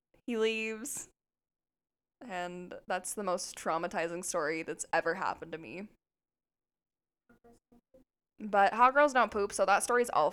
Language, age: English, 10-29